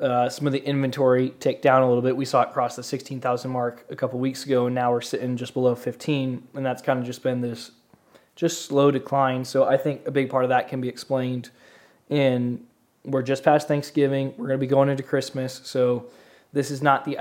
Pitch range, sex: 125-140 Hz, male